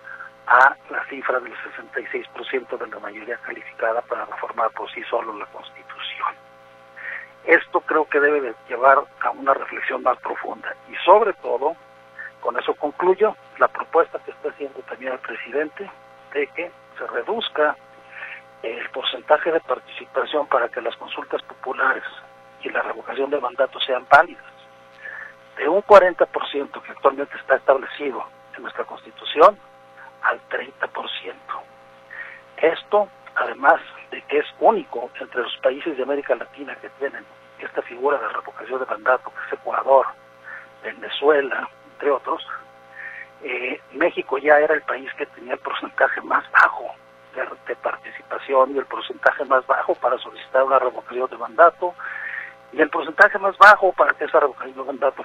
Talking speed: 145 wpm